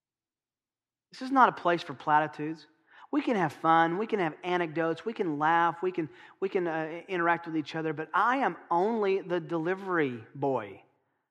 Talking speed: 180 wpm